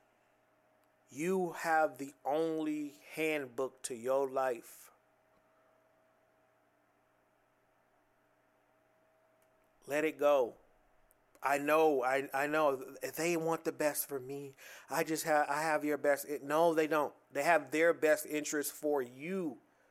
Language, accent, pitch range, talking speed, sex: English, American, 145-165 Hz, 120 wpm, male